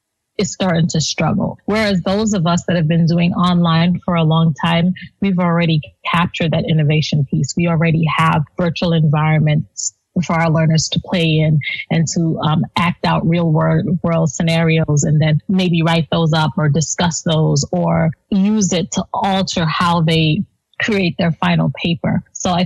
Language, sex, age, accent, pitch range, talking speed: English, female, 30-49, American, 160-185 Hz, 170 wpm